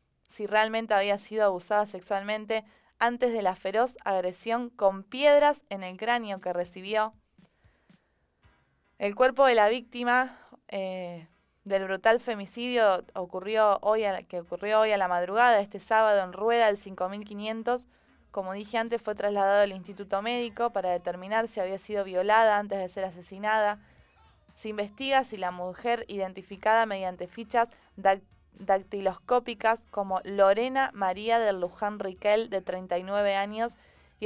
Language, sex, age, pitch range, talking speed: English, female, 20-39, 195-240 Hz, 140 wpm